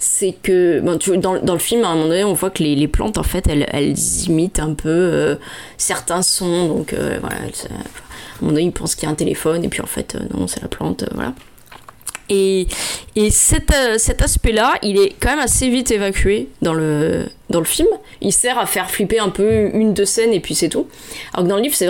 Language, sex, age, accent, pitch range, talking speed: French, female, 20-39, French, 170-210 Hz, 260 wpm